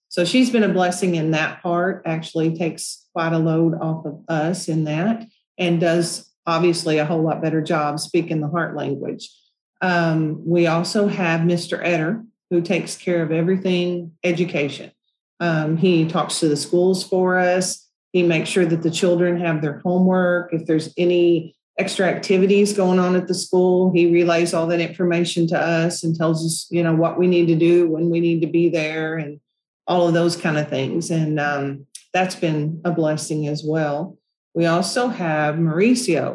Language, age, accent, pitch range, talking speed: English, 40-59, American, 160-185 Hz, 185 wpm